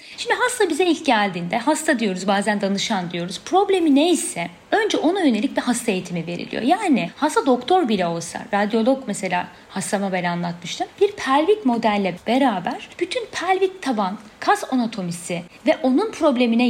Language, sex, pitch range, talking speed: Turkish, female, 195-280 Hz, 145 wpm